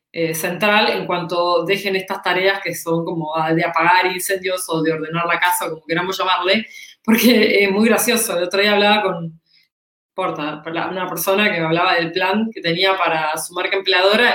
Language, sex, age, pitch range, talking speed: Spanish, female, 20-39, 175-215 Hz, 180 wpm